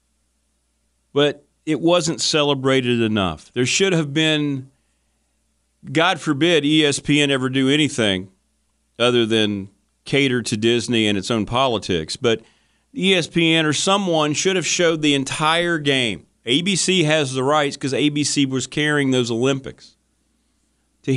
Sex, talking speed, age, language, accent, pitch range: male, 130 wpm, 40-59, English, American, 120-170 Hz